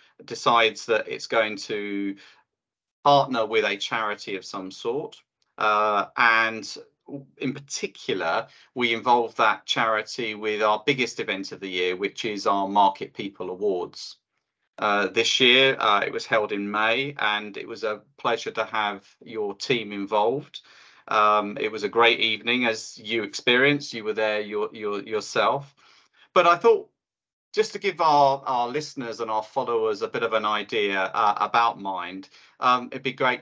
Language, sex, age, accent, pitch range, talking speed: English, male, 40-59, British, 110-150 Hz, 165 wpm